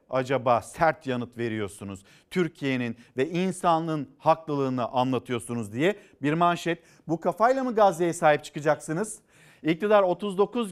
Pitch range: 145-185 Hz